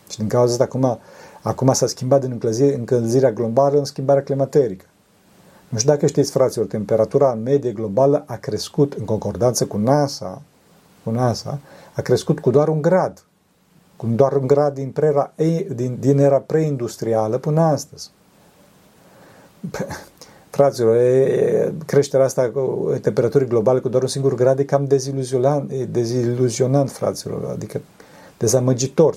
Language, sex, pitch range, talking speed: Romanian, male, 115-140 Hz, 135 wpm